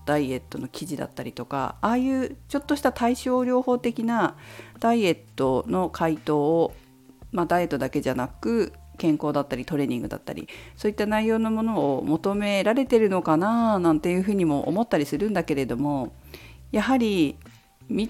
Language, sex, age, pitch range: Japanese, female, 50-69, 140-205 Hz